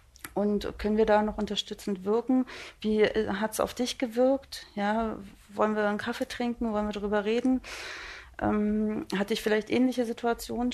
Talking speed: 155 wpm